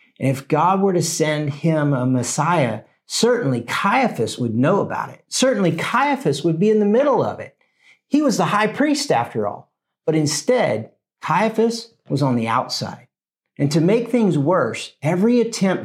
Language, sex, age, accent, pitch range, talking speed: English, male, 50-69, American, 140-195 Hz, 170 wpm